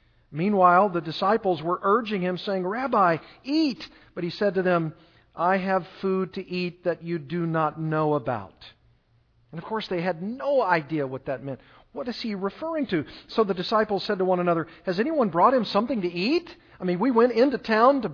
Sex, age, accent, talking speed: male, 50-69, American, 200 wpm